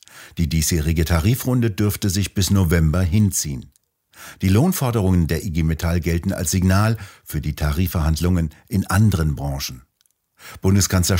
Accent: German